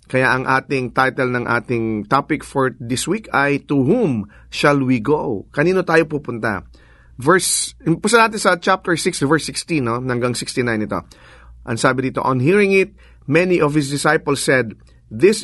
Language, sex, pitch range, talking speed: English, male, 130-175 Hz, 165 wpm